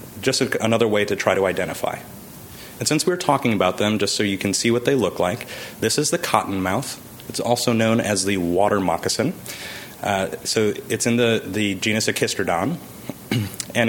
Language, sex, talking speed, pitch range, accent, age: English, male, 185 wpm, 100-120 Hz, American, 30-49